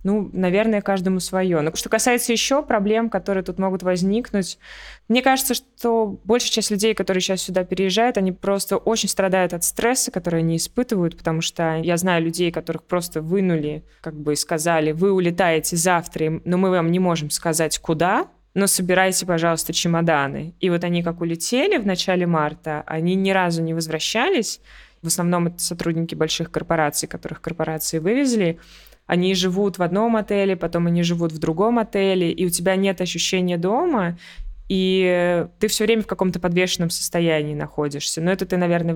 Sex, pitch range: female, 165-195 Hz